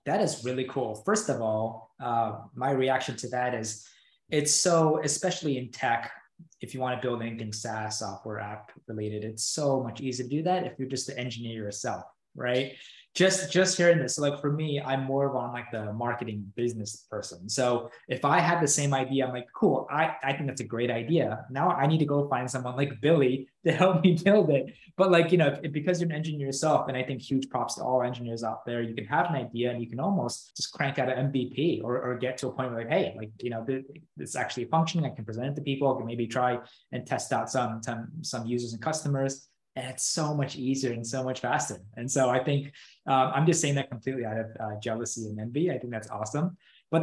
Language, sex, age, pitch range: English, male, 20-39, 120-145 Hz